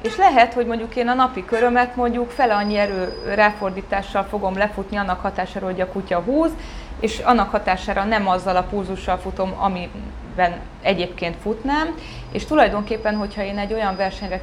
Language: Hungarian